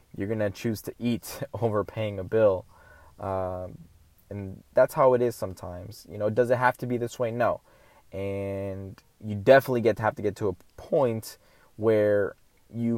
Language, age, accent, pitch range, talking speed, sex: English, 20-39, American, 100-125 Hz, 185 wpm, male